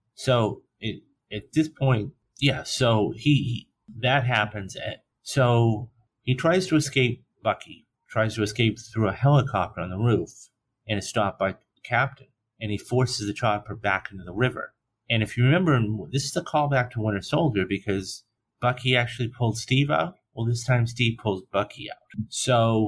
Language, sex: English, male